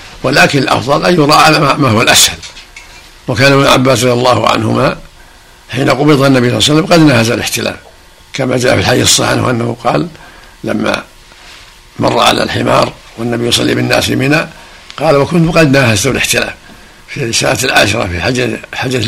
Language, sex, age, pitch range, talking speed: Arabic, male, 60-79, 115-140 Hz, 150 wpm